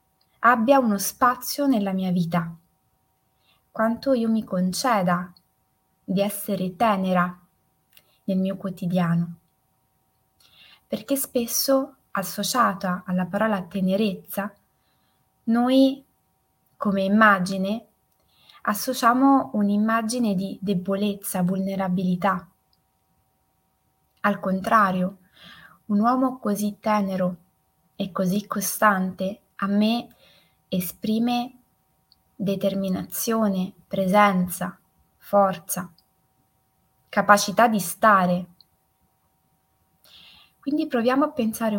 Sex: female